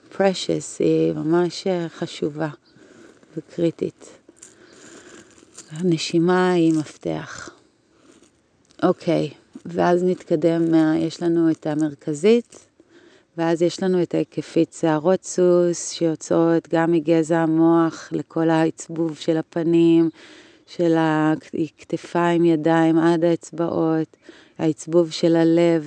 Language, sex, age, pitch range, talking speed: Hebrew, female, 30-49, 160-180 Hz, 90 wpm